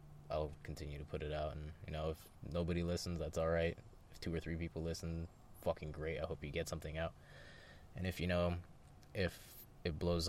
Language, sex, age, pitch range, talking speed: English, male, 20-39, 80-95 Hz, 210 wpm